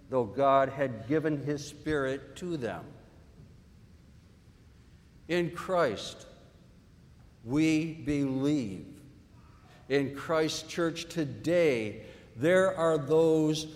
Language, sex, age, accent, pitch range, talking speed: English, male, 60-79, American, 115-155 Hz, 85 wpm